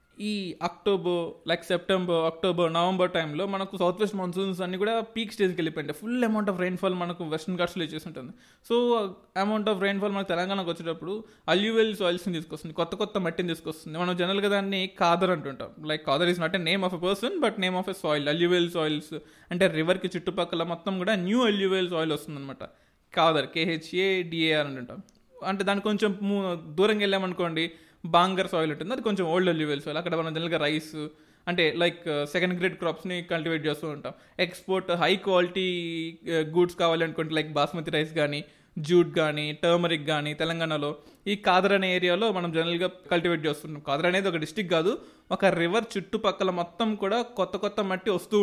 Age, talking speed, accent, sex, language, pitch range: 20-39, 165 wpm, native, male, Telugu, 160-195 Hz